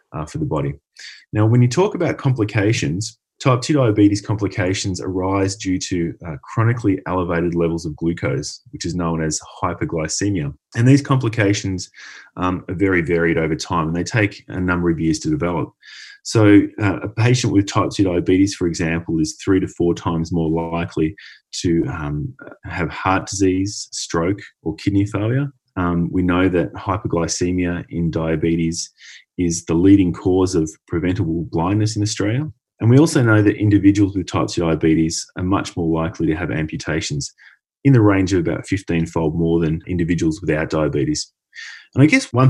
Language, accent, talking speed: English, Australian, 170 wpm